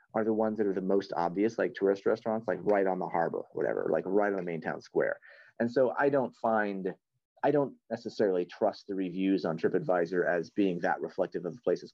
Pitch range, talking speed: 95-115 Hz, 220 wpm